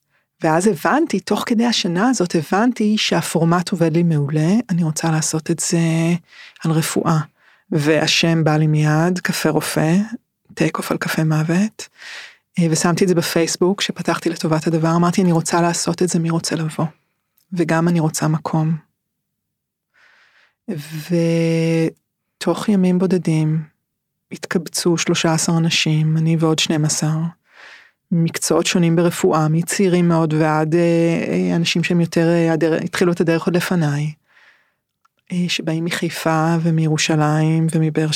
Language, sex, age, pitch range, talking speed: Hebrew, female, 30-49, 160-180 Hz, 120 wpm